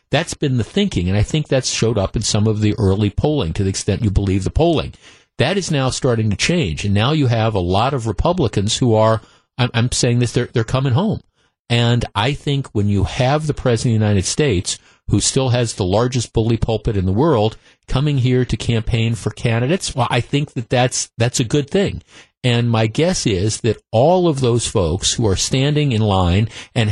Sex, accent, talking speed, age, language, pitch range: male, American, 220 wpm, 50-69, English, 105-130 Hz